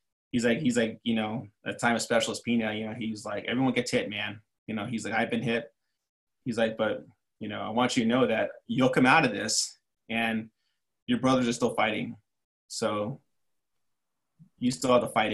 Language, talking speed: English, 215 wpm